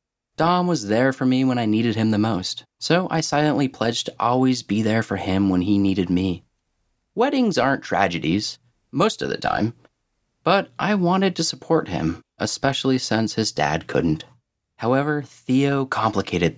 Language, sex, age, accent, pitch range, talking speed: English, male, 30-49, American, 90-130 Hz, 165 wpm